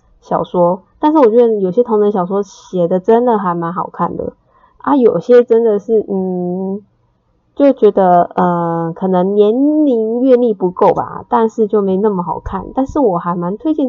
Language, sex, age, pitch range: Chinese, female, 20-39, 195-250 Hz